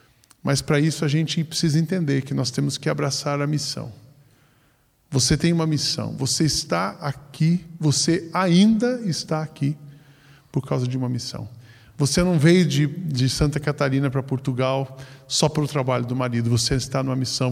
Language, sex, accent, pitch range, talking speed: Portuguese, male, Brazilian, 125-165 Hz, 165 wpm